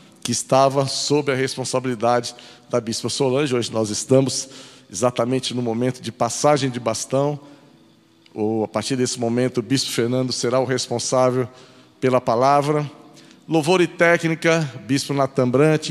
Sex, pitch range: male, 125-150 Hz